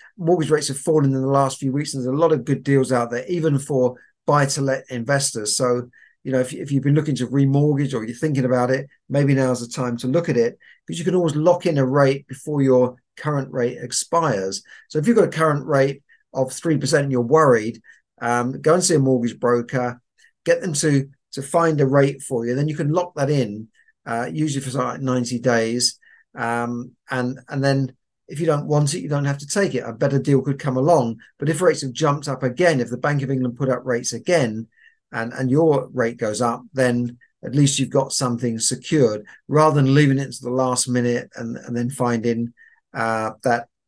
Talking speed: 225 wpm